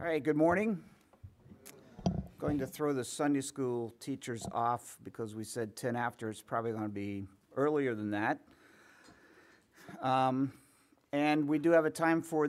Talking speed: 155 wpm